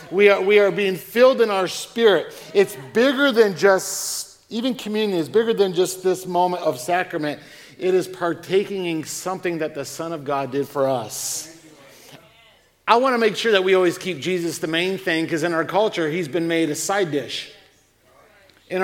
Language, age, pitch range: English, 50-69, 165-215 Hz